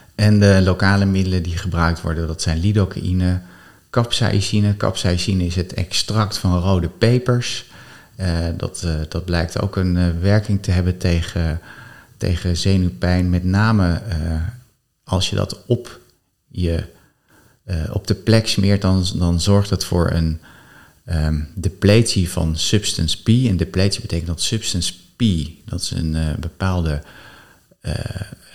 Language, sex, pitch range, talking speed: Dutch, male, 85-105 Hz, 145 wpm